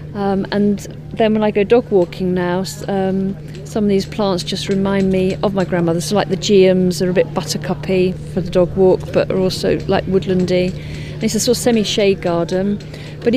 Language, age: English, 40-59